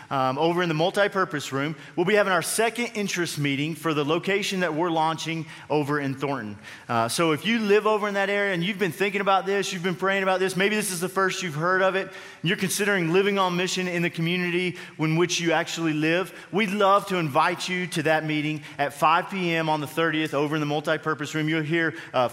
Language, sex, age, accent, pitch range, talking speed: English, male, 30-49, American, 150-185 Hz, 230 wpm